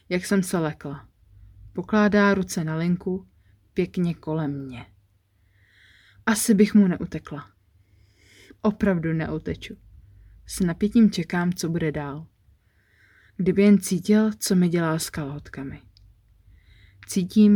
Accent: native